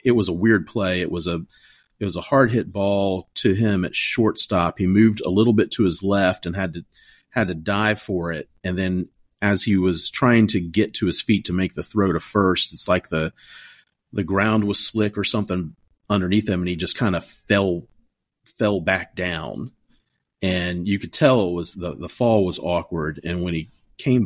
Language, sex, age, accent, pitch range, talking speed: English, male, 40-59, American, 85-100 Hz, 215 wpm